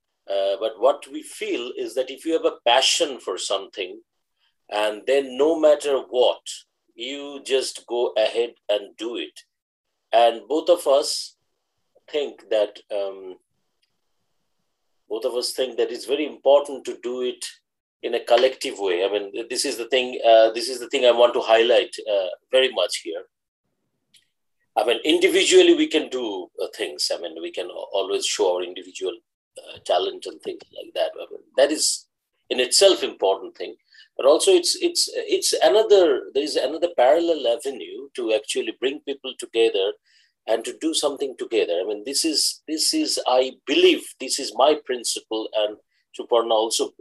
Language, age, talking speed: Bengali, 50-69, 170 wpm